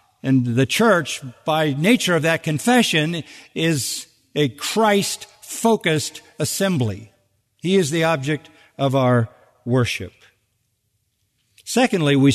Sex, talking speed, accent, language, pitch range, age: male, 100 wpm, American, English, 135-180 Hz, 50-69